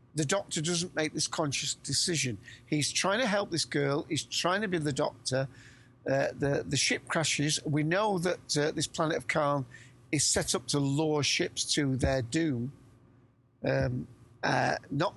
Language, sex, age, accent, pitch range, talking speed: English, male, 50-69, British, 125-165 Hz, 175 wpm